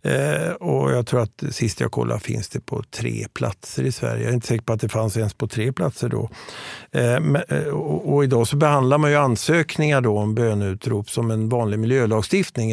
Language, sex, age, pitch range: Swedish, male, 50-69, 110-140 Hz